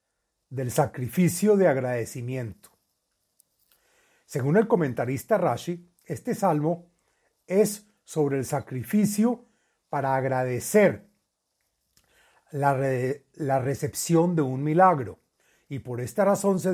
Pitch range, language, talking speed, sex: 140-185 Hz, Spanish, 95 wpm, male